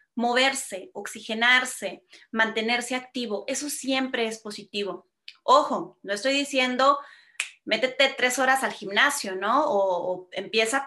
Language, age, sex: Spanish, 30-49, female